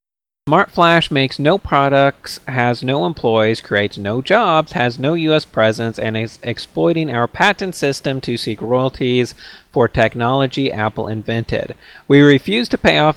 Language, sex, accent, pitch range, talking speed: English, male, American, 120-160 Hz, 145 wpm